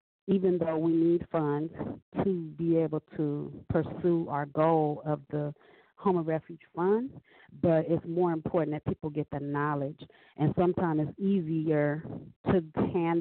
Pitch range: 150-165 Hz